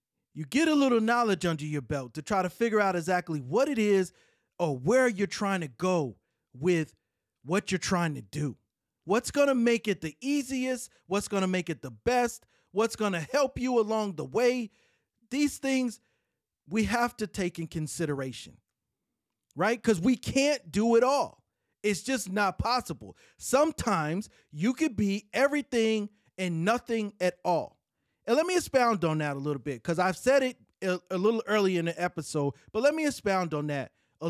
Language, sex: English, male